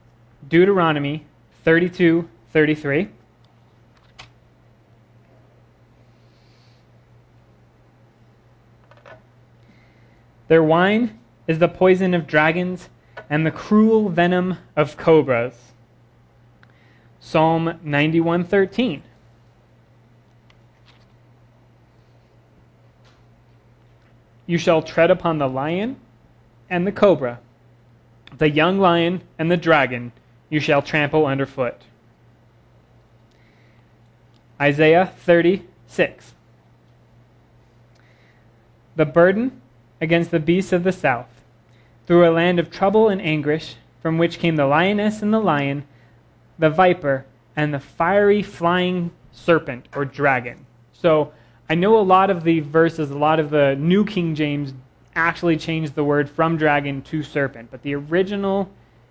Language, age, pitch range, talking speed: English, 20-39, 120-170 Hz, 95 wpm